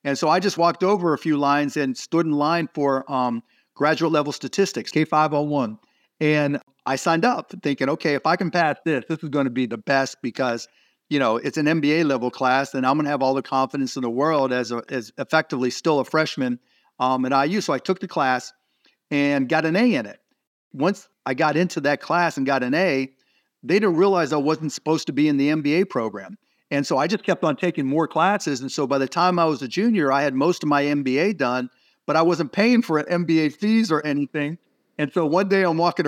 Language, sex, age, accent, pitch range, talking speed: English, male, 50-69, American, 140-195 Hz, 230 wpm